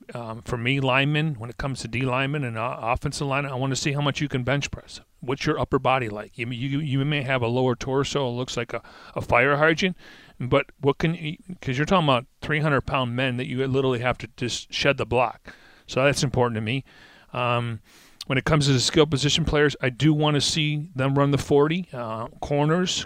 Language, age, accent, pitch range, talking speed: English, 40-59, American, 125-145 Hz, 230 wpm